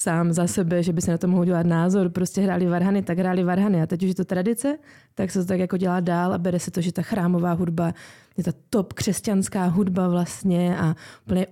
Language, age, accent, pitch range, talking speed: Czech, 20-39, native, 180-195 Hz, 240 wpm